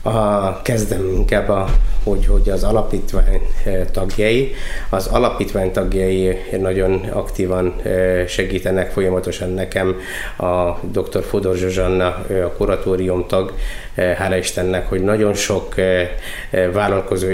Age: 20-39